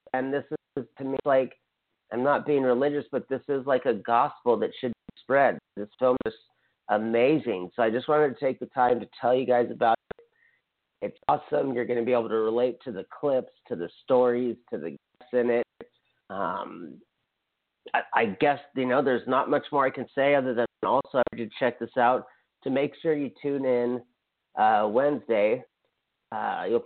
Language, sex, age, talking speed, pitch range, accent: English, male, 40-59, 195 wpm, 115-135 Hz, American